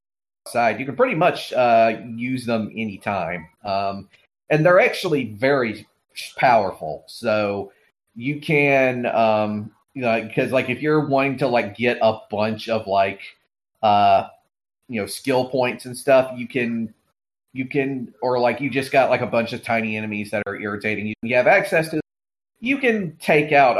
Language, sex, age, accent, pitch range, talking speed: English, male, 30-49, American, 105-125 Hz, 170 wpm